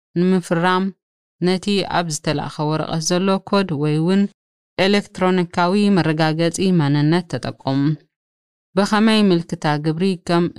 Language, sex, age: Amharic, female, 20-39